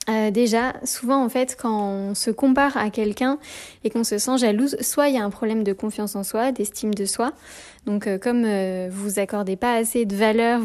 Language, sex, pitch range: French, female, 205-250 Hz